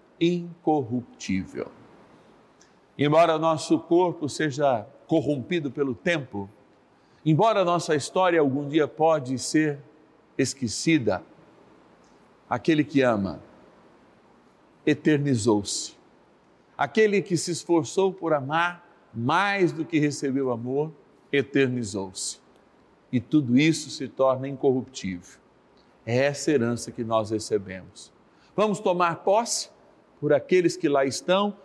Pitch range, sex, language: 125-175 Hz, male, Portuguese